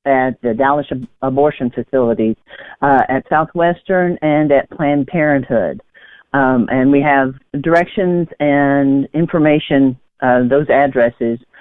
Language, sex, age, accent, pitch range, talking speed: English, female, 50-69, American, 130-155 Hz, 120 wpm